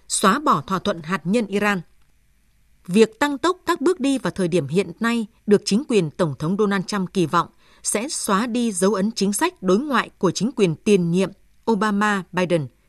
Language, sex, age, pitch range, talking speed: Vietnamese, female, 20-39, 185-235 Hz, 195 wpm